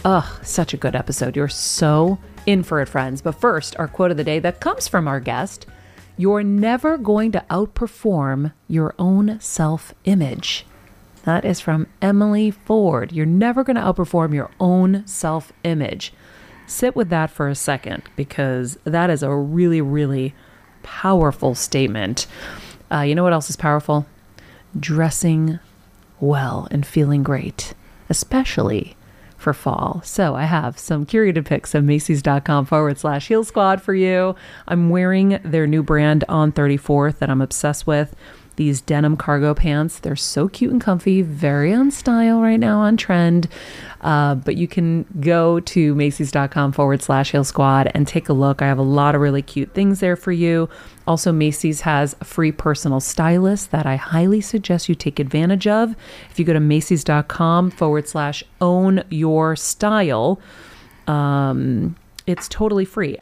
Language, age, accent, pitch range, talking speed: English, 40-59, American, 145-185 Hz, 160 wpm